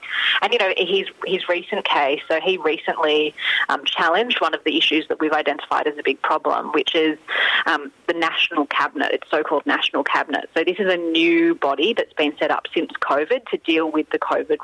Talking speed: 205 wpm